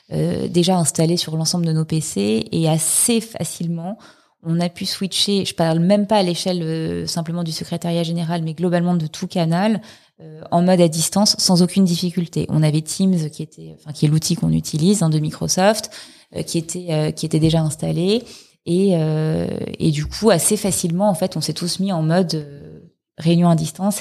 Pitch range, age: 160-190 Hz, 20-39